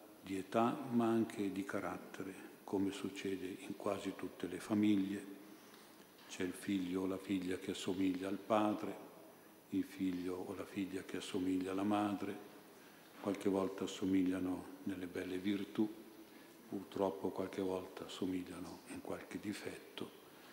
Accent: native